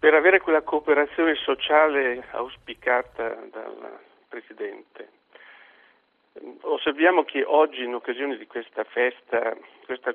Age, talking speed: 50-69, 100 wpm